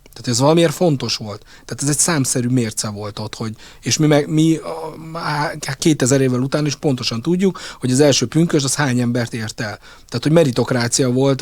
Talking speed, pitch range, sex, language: 185 wpm, 120-150 Hz, male, Hungarian